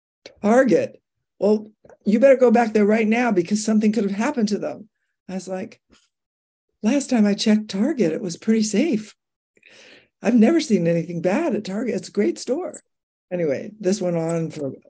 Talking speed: 175 wpm